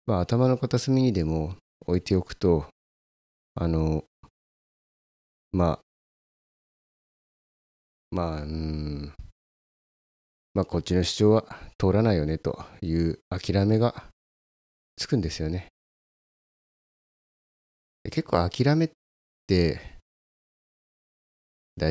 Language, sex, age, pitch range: Japanese, male, 30-49, 70-100 Hz